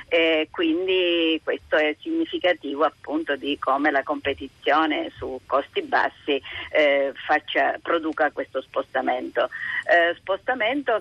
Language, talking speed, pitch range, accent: Italian, 110 wpm, 150-190 Hz, native